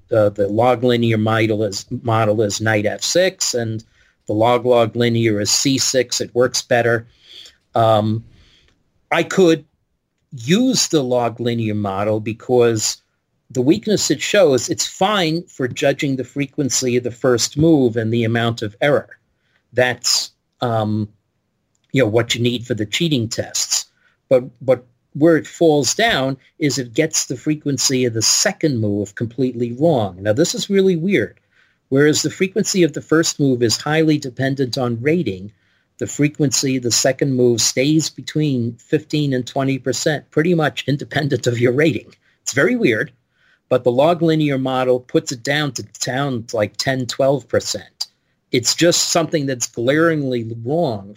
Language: English